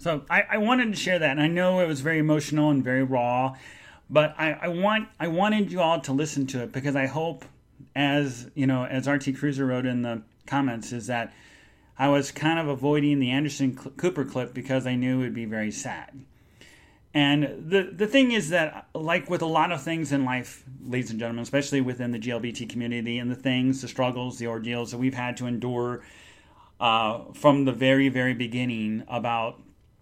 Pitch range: 120-145 Hz